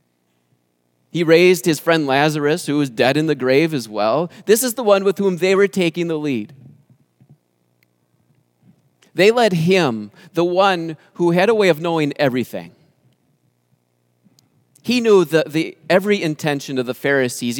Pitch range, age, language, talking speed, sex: 115-175 Hz, 30-49, English, 155 wpm, male